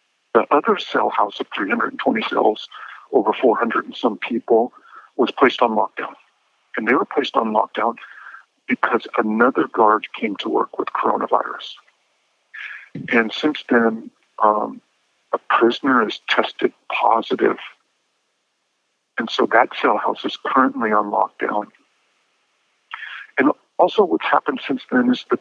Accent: American